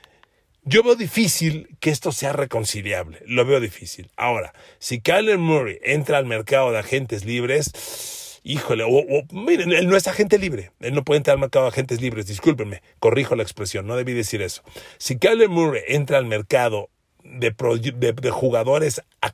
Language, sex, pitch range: Spanish, male, 120-160 Hz